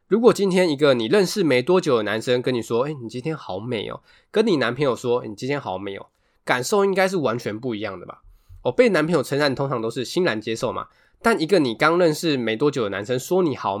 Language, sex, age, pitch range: Chinese, male, 20-39, 110-170 Hz